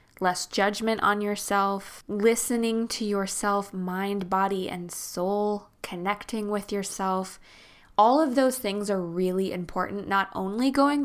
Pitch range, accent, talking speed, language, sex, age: 190-225 Hz, American, 130 wpm, English, female, 20-39